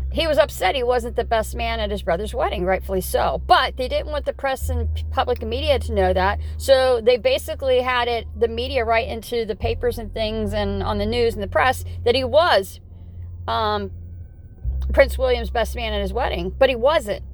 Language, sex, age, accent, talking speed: English, female, 40-59, American, 210 wpm